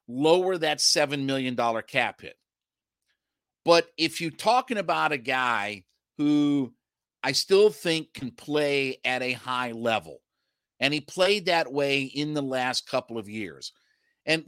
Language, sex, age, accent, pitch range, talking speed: English, male, 50-69, American, 125-160 Hz, 145 wpm